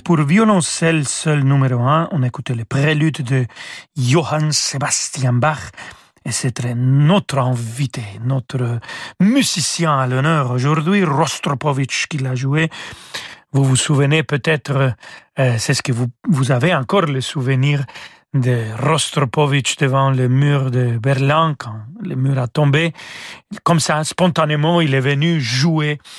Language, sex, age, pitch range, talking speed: French, male, 40-59, 130-160 Hz, 135 wpm